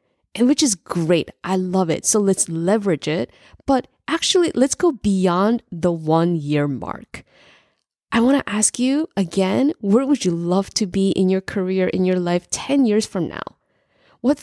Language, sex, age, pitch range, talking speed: English, female, 20-39, 175-230 Hz, 180 wpm